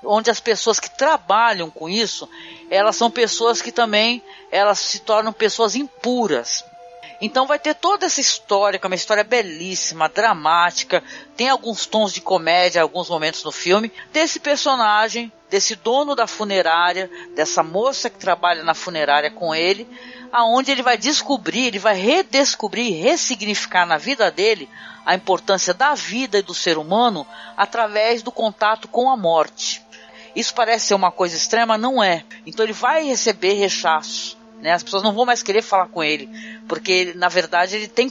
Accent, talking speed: Brazilian, 165 wpm